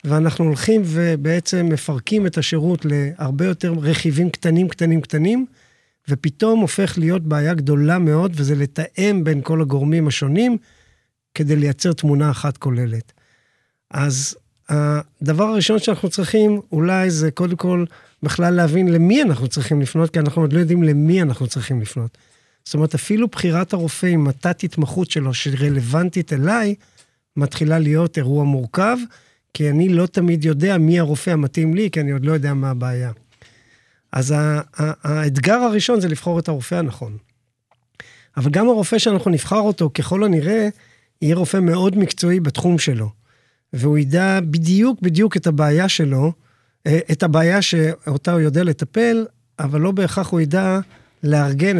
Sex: male